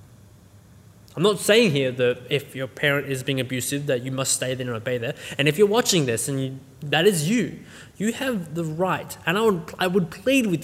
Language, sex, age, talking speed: English, male, 20-39, 215 wpm